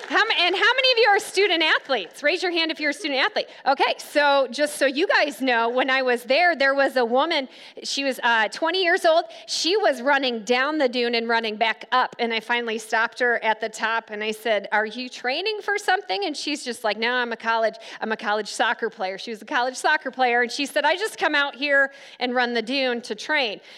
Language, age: English, 40-59